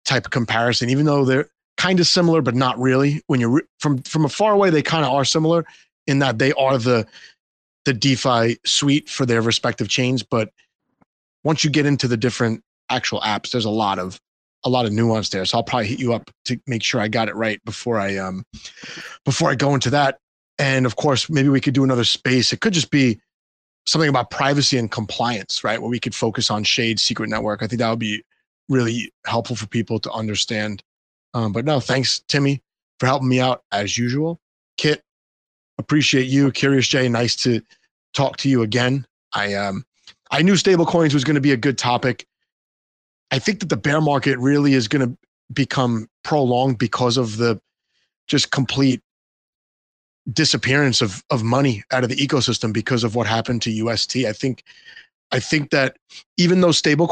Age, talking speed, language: 30-49, 200 wpm, English